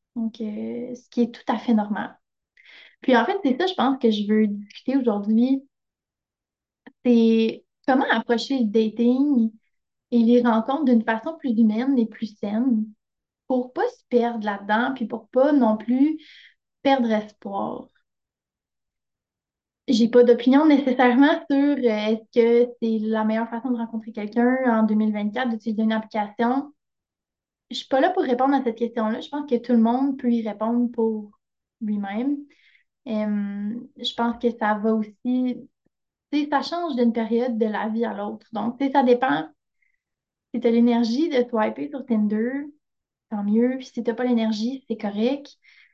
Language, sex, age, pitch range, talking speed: French, female, 20-39, 220-260 Hz, 170 wpm